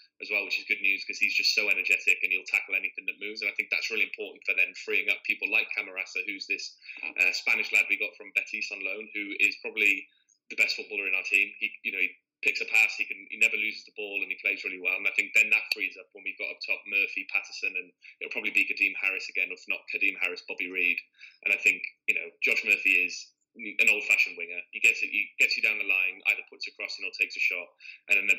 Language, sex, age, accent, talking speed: English, male, 20-39, British, 270 wpm